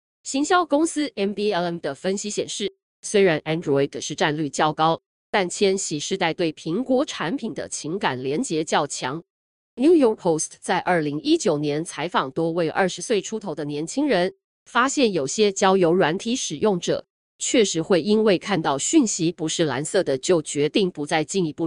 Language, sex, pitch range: Chinese, female, 170-250 Hz